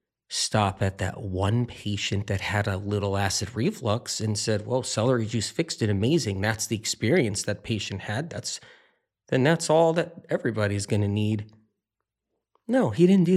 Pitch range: 105-155 Hz